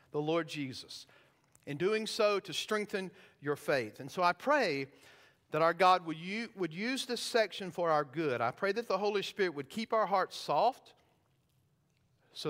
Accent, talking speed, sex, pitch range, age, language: American, 175 wpm, male, 150-210 Hz, 50-69, English